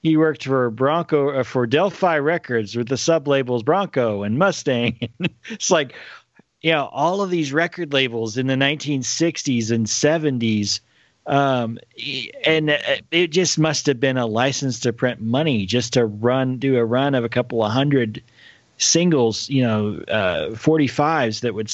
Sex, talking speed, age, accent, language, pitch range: male, 160 wpm, 40-59, American, English, 115-155 Hz